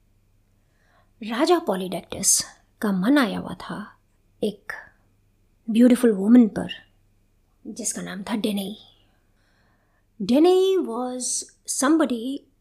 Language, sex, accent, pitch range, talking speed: Hindi, female, native, 185-250 Hz, 85 wpm